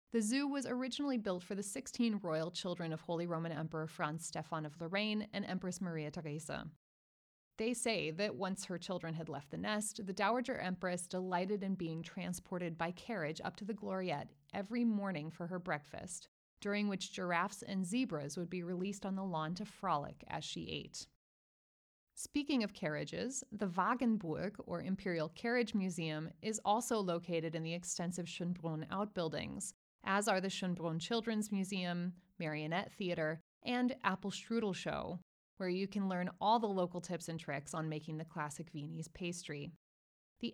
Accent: American